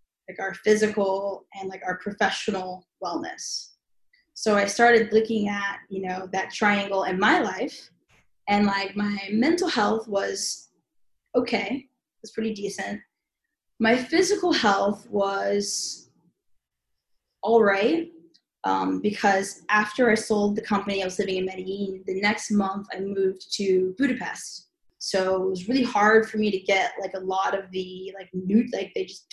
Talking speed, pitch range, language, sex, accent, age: 155 wpm, 195-235 Hz, English, female, American, 10-29